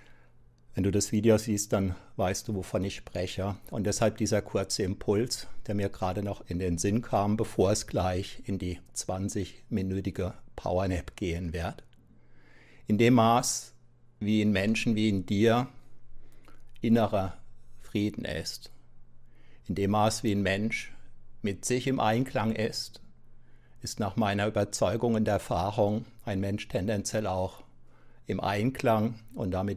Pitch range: 95-120 Hz